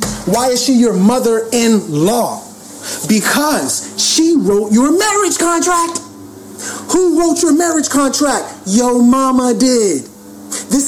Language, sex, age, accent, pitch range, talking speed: English, male, 30-49, American, 220-305 Hz, 110 wpm